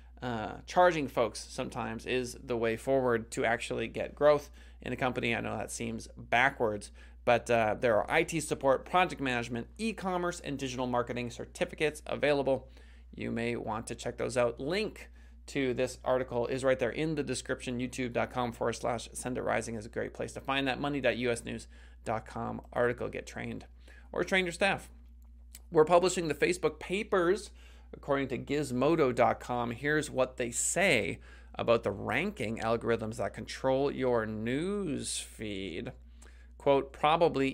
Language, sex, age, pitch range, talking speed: English, male, 30-49, 105-135 Hz, 150 wpm